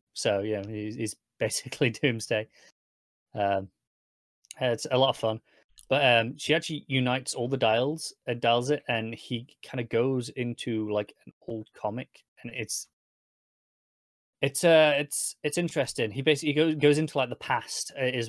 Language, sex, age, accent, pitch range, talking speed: English, male, 30-49, British, 105-130 Hz, 160 wpm